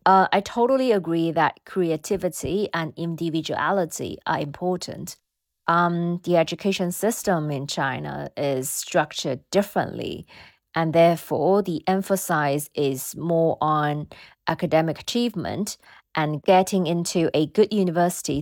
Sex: female